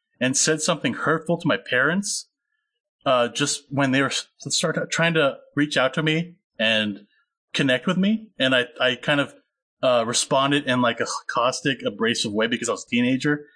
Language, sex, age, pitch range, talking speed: English, male, 30-49, 130-210 Hz, 180 wpm